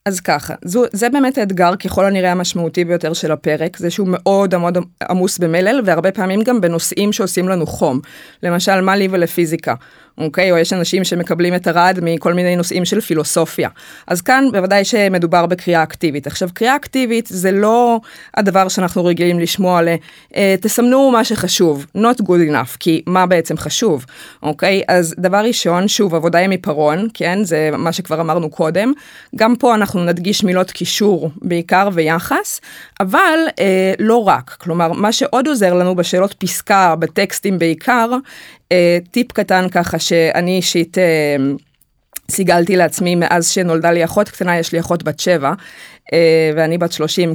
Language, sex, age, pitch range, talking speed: Hebrew, female, 20-39, 170-205 Hz, 160 wpm